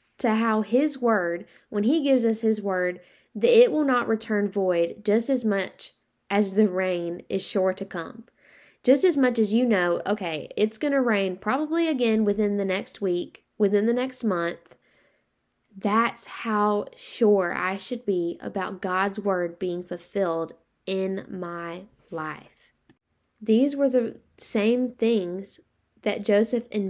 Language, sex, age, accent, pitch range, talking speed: English, female, 10-29, American, 185-230 Hz, 155 wpm